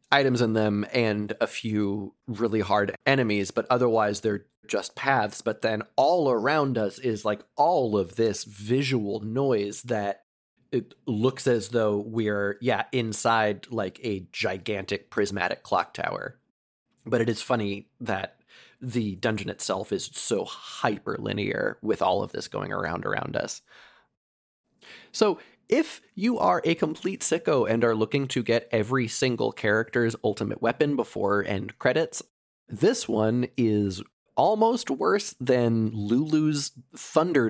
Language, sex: English, male